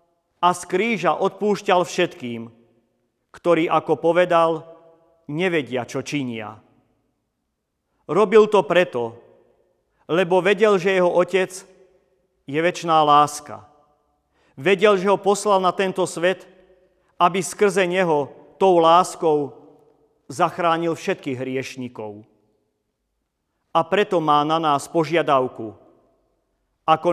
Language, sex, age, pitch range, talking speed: Slovak, male, 40-59, 150-185 Hz, 95 wpm